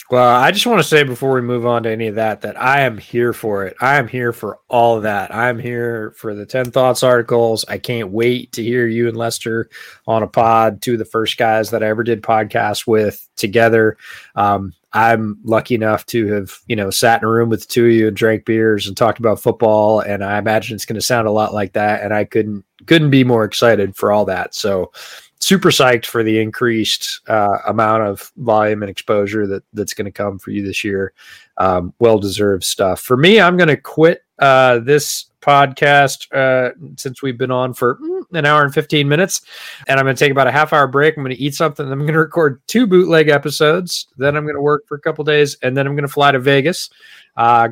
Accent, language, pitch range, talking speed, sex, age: American, English, 110-140 Hz, 235 wpm, male, 20-39